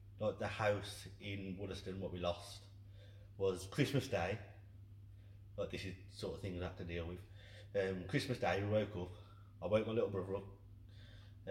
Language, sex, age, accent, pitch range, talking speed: English, male, 20-39, British, 95-105 Hz, 190 wpm